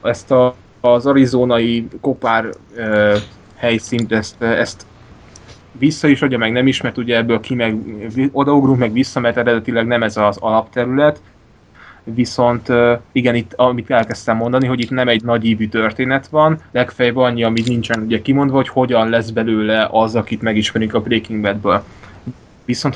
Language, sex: Hungarian, male